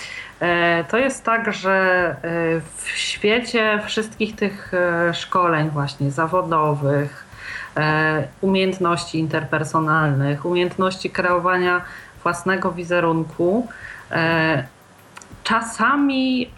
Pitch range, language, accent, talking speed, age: 165-210 Hz, Polish, native, 65 wpm, 40-59